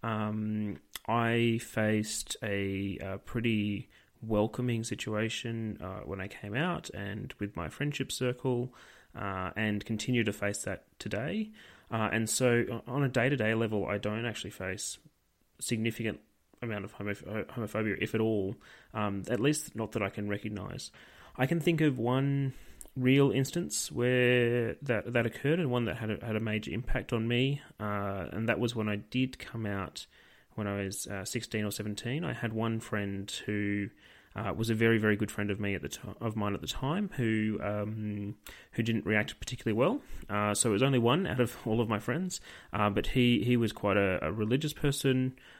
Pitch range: 100-125 Hz